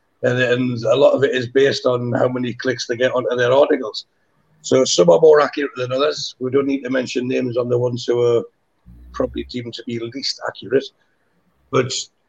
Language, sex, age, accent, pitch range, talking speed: English, male, 60-79, British, 125-155 Hz, 205 wpm